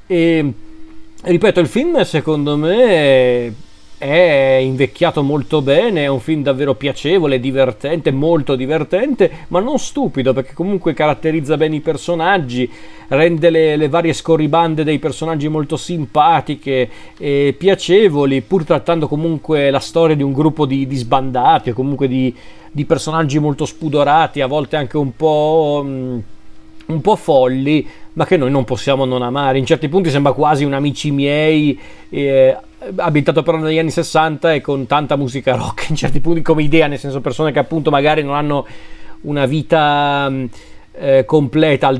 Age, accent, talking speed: 40-59, native, 155 wpm